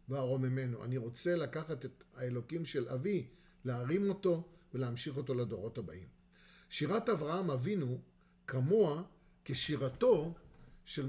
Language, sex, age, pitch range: Hebrew, male, 50-69, 130-175 Hz